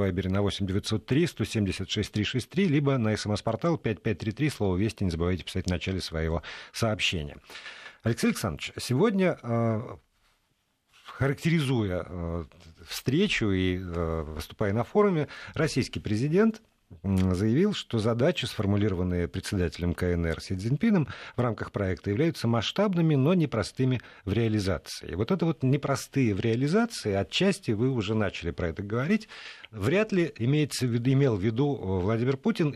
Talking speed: 120 wpm